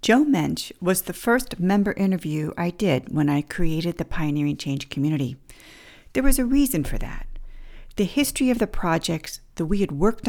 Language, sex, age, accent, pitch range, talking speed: English, female, 50-69, American, 155-210 Hz, 180 wpm